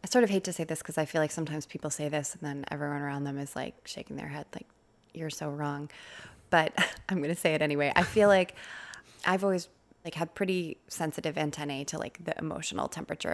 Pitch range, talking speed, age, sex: 150-175 Hz, 230 wpm, 20-39, female